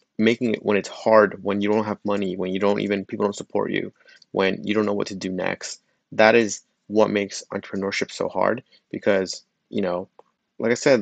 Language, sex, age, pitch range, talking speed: English, male, 20-39, 100-110 Hz, 205 wpm